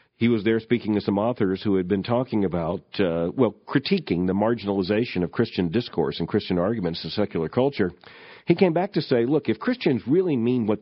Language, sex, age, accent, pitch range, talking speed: English, male, 50-69, American, 95-130 Hz, 205 wpm